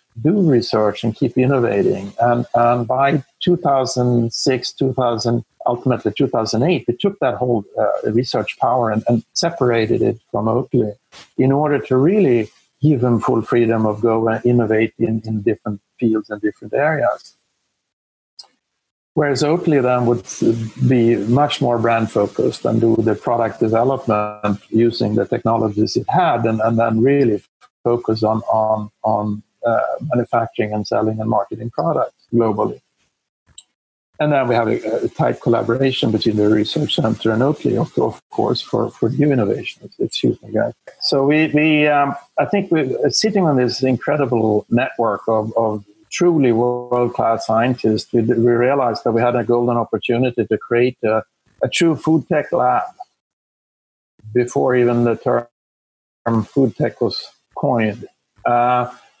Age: 50-69